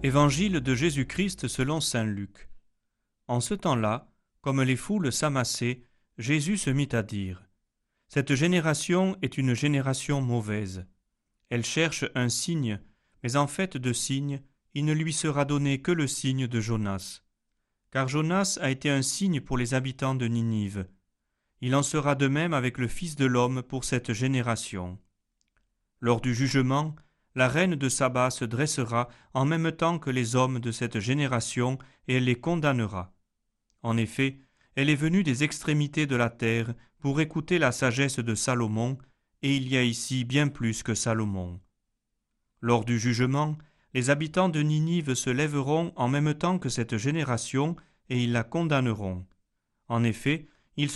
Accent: French